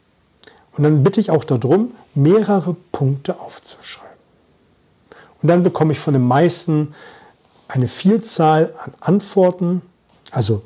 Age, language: 40-59, German